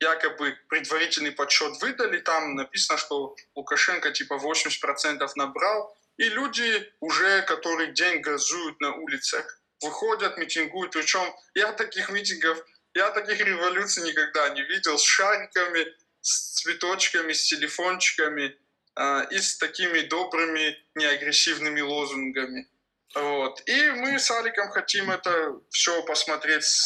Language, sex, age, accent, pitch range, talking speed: Russian, male, 20-39, native, 145-200 Hz, 115 wpm